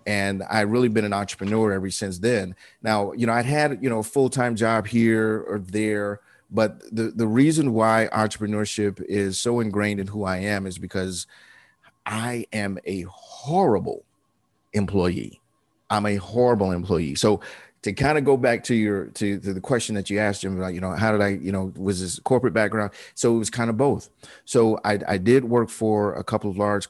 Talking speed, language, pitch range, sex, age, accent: 200 wpm, English, 95-110 Hz, male, 30-49, American